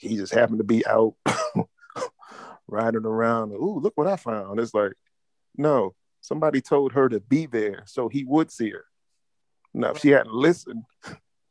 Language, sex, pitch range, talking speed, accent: English, male, 110-130 Hz, 165 wpm, American